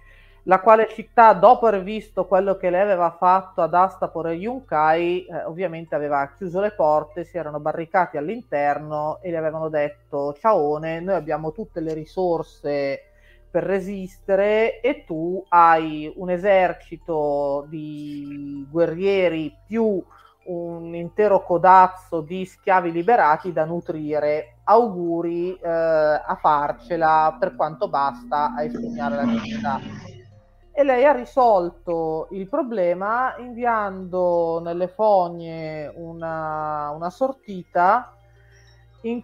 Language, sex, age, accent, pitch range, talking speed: Italian, female, 30-49, native, 155-190 Hz, 120 wpm